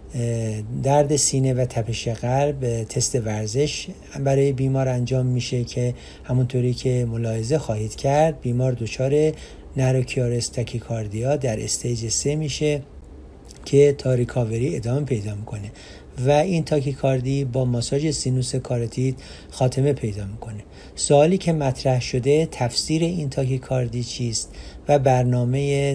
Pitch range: 120-140 Hz